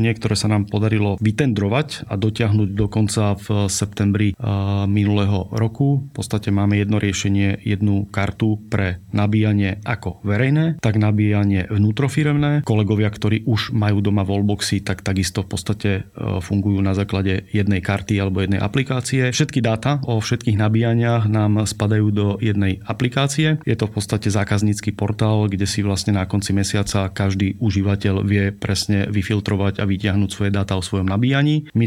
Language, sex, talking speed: Slovak, male, 155 wpm